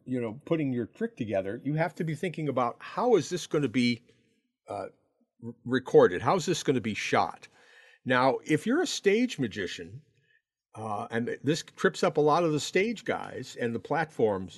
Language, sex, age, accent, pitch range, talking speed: English, male, 50-69, American, 115-160 Hz, 195 wpm